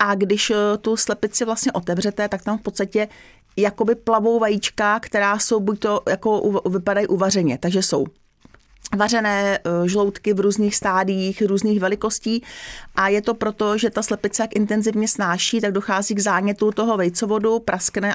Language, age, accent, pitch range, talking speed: Czech, 30-49, native, 200-215 Hz, 150 wpm